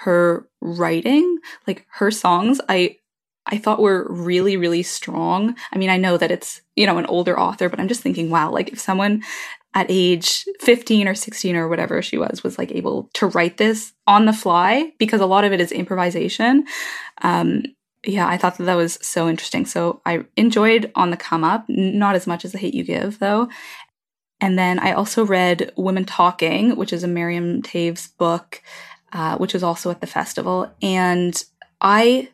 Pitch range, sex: 175-215 Hz, female